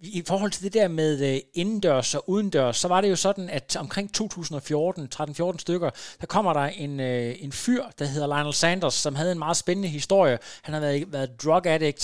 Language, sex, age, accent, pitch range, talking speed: Danish, male, 30-49, native, 150-195 Hz, 205 wpm